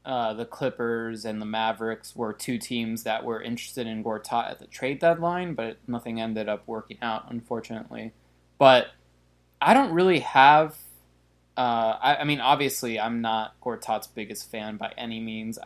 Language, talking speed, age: English, 165 wpm, 20-39